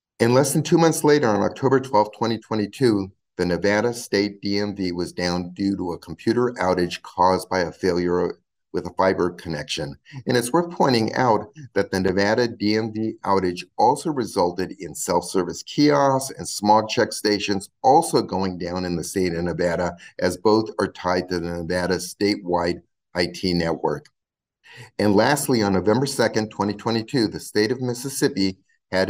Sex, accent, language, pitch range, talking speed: male, American, English, 95-125 Hz, 160 wpm